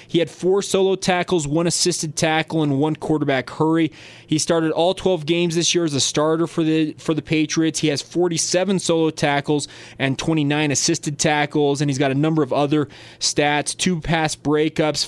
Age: 20-39